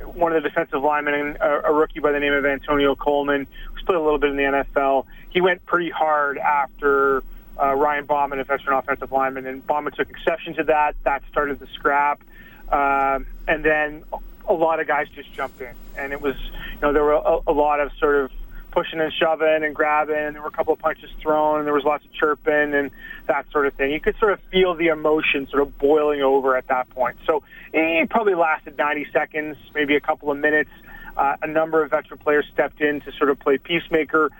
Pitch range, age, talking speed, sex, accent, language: 140-155 Hz, 30-49, 225 wpm, male, American, English